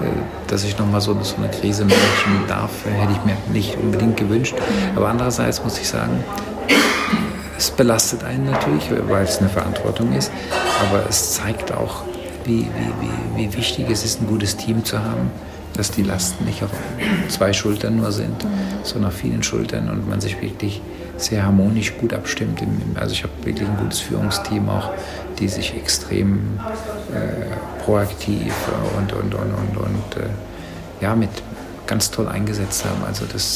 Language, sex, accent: German, male, German